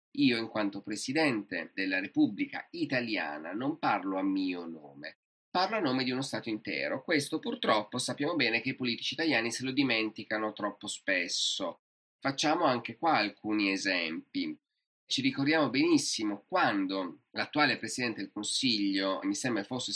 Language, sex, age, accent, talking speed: Italian, male, 30-49, native, 145 wpm